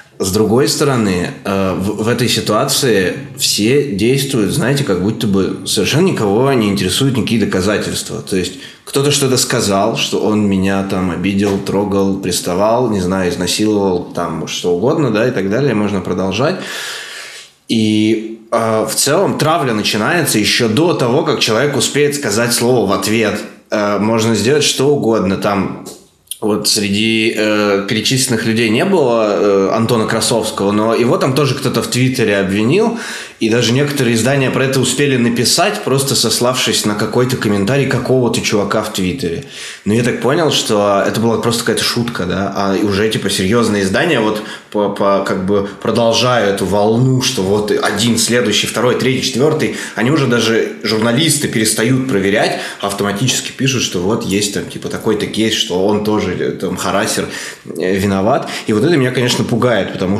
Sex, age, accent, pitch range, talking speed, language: male, 20-39, native, 100-125 Hz, 155 wpm, Russian